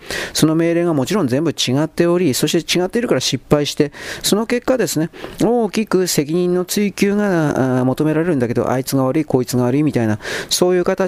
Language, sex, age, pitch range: Japanese, male, 40-59, 130-180 Hz